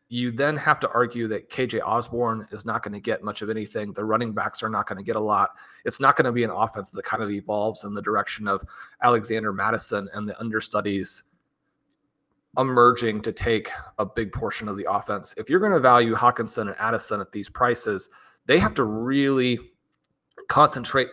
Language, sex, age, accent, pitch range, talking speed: English, male, 30-49, American, 105-125 Hz, 200 wpm